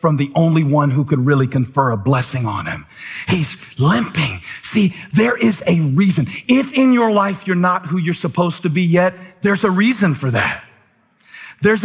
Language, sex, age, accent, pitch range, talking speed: English, male, 40-59, American, 185-260 Hz, 185 wpm